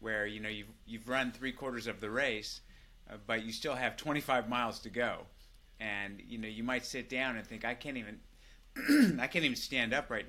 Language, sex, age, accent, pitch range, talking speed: English, male, 30-49, American, 105-130 Hz, 220 wpm